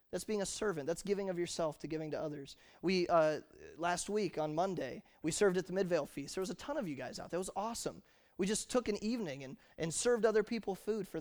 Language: English